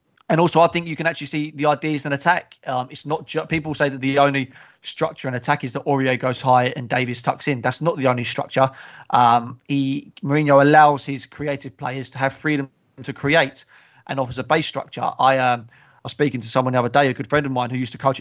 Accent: British